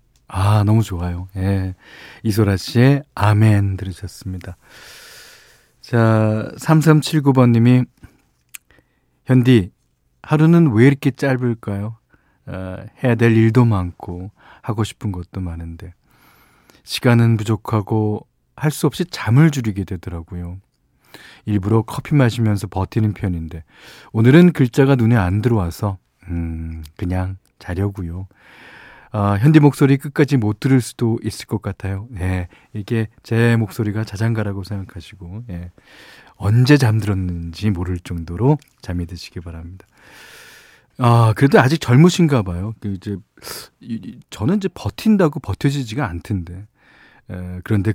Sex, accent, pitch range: male, native, 95-130 Hz